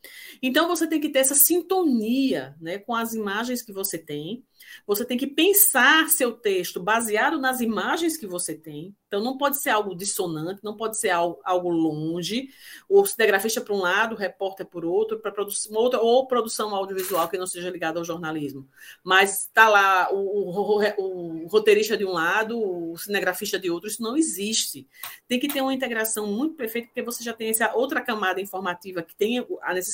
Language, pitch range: Portuguese, 195-270 Hz